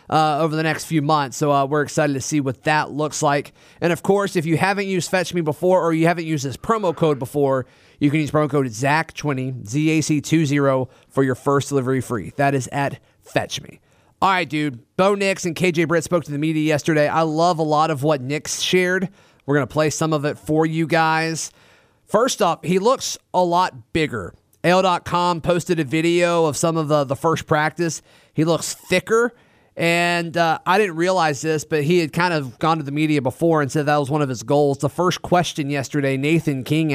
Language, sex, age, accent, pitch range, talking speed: English, male, 30-49, American, 140-170 Hz, 215 wpm